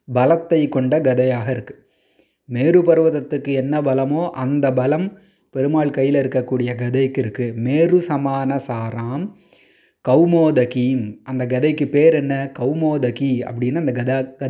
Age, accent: 30-49, native